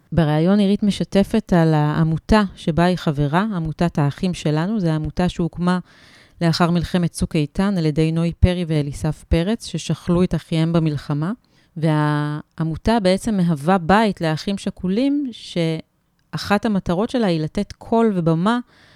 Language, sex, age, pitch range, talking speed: Hebrew, female, 30-49, 160-200 Hz, 130 wpm